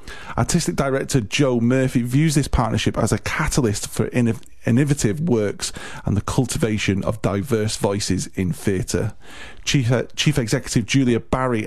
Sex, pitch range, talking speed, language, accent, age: male, 100-125 Hz, 135 wpm, English, British, 30-49